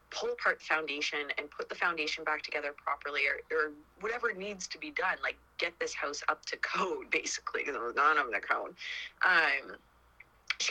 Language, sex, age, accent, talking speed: English, female, 20-39, American, 195 wpm